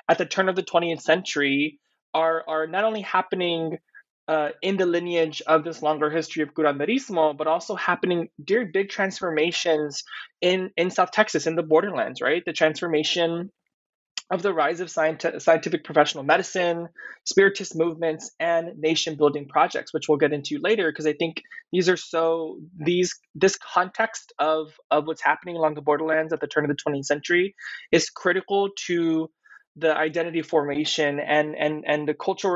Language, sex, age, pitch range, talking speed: English, male, 20-39, 150-180 Hz, 170 wpm